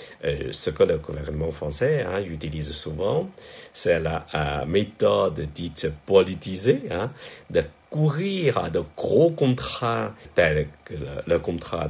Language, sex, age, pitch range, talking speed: French, male, 60-79, 80-130 Hz, 135 wpm